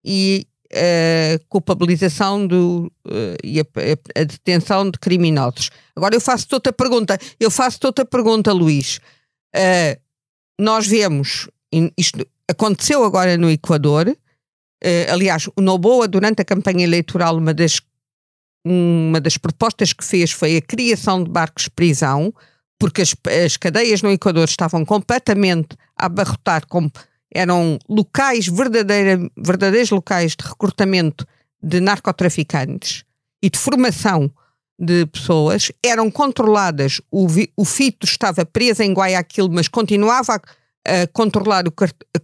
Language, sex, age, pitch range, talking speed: Portuguese, female, 50-69, 160-205 Hz, 130 wpm